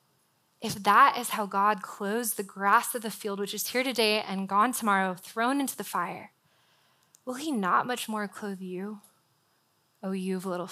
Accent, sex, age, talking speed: American, female, 20-39, 185 wpm